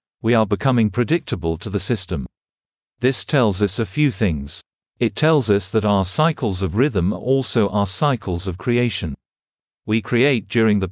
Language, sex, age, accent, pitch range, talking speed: English, male, 50-69, British, 95-120 Hz, 170 wpm